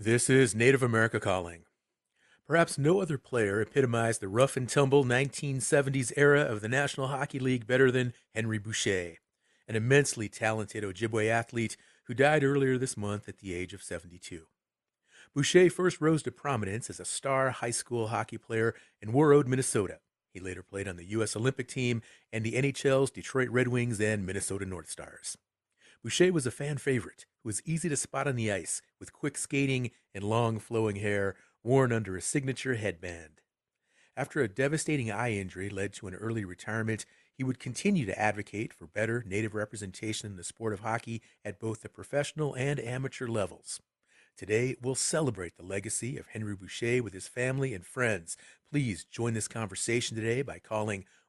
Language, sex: English, male